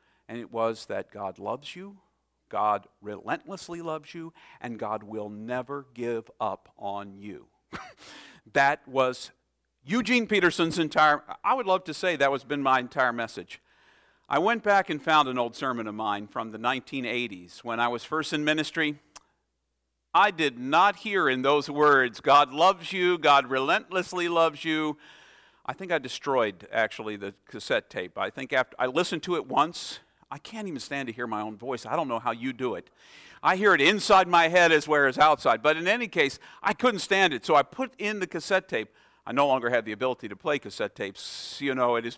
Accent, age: American, 50-69